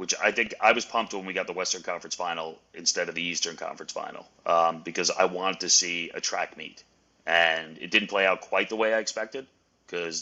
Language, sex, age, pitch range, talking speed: English, male, 30-49, 85-110 Hz, 230 wpm